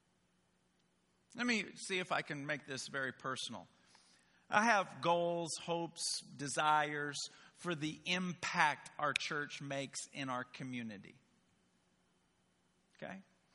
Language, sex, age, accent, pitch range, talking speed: English, male, 50-69, American, 150-195 Hz, 110 wpm